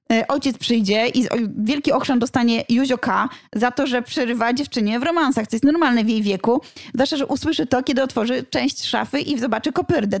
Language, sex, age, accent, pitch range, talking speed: Polish, female, 20-39, native, 220-265 Hz, 180 wpm